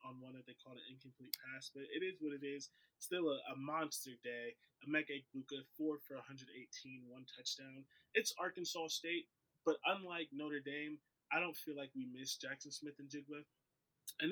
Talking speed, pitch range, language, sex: 190 wpm, 130-160 Hz, English, male